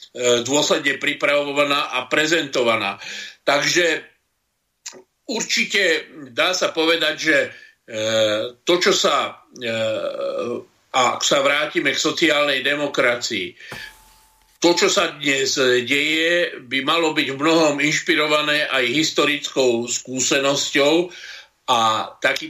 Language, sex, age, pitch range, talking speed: Slovak, male, 50-69, 130-165 Hz, 95 wpm